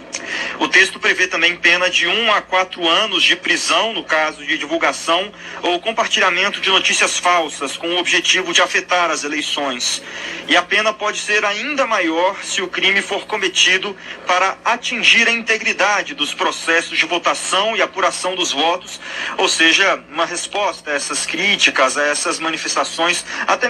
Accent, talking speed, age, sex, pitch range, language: Brazilian, 160 wpm, 40-59, male, 155-190 Hz, Portuguese